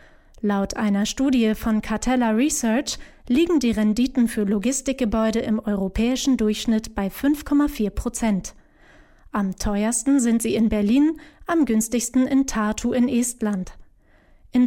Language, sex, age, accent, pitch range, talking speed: German, female, 30-49, German, 210-255 Hz, 125 wpm